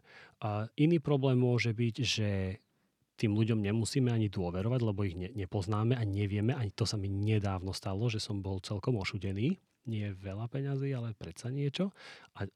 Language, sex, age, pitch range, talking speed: Slovak, male, 30-49, 100-120 Hz, 160 wpm